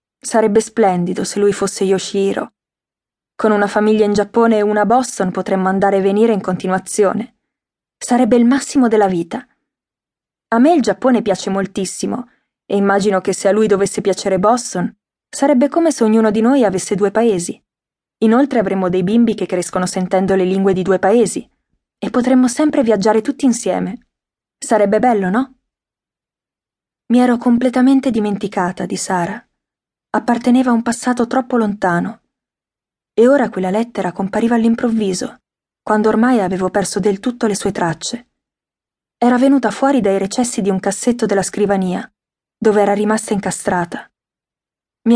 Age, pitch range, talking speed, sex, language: 20-39, 195-245 Hz, 150 wpm, female, Italian